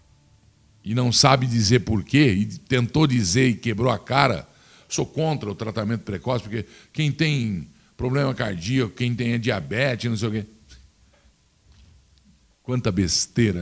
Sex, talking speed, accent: male, 140 wpm, Brazilian